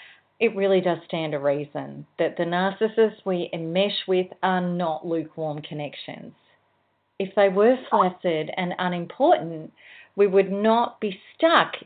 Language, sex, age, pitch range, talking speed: English, female, 40-59, 165-200 Hz, 135 wpm